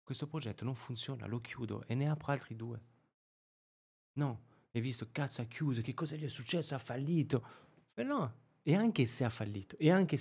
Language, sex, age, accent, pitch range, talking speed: Italian, male, 30-49, native, 110-140 Hz, 195 wpm